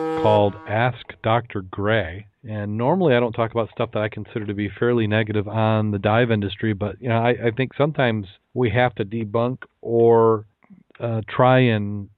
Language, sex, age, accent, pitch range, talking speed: English, male, 40-59, American, 100-125 Hz, 180 wpm